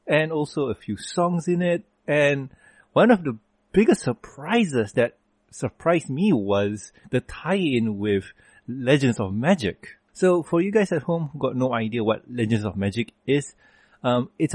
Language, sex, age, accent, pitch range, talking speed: English, male, 30-49, Malaysian, 105-135 Hz, 170 wpm